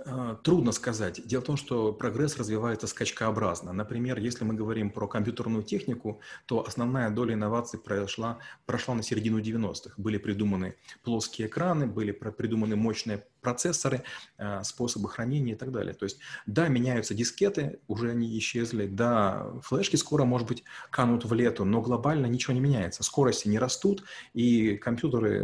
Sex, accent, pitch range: male, native, 105-125 Hz